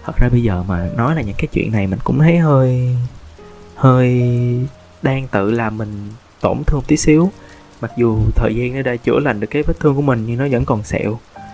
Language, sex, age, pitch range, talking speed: Vietnamese, male, 20-39, 110-150 Hz, 230 wpm